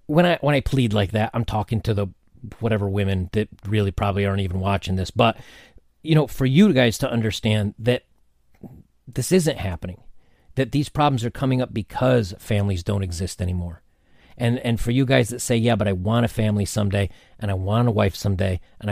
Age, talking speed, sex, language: 40-59, 205 wpm, male, English